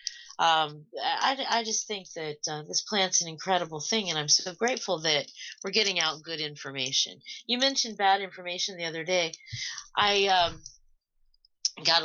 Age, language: 30-49, English